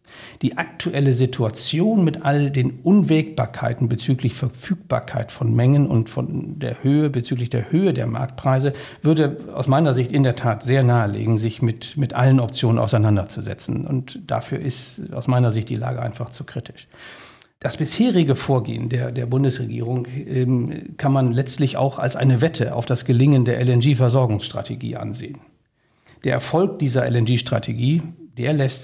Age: 60-79